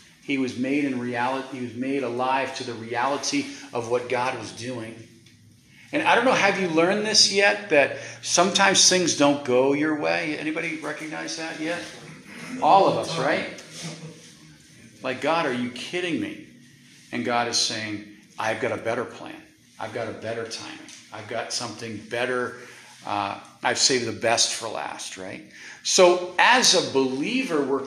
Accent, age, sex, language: American, 40-59, male, English